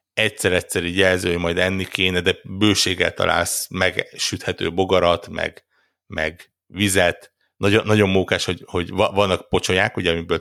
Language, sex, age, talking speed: Hungarian, male, 60-79, 140 wpm